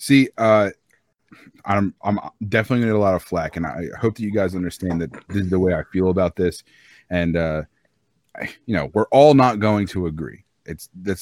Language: English